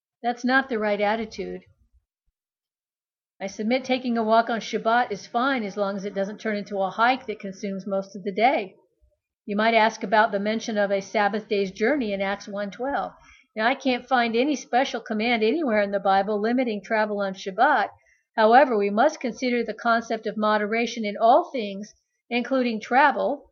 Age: 50-69